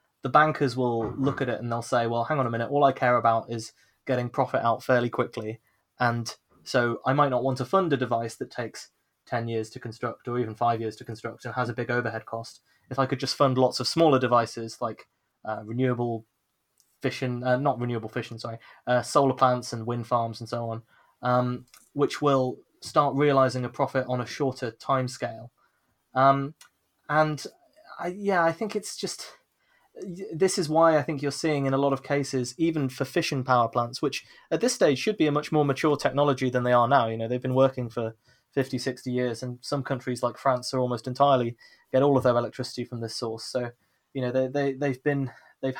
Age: 20-39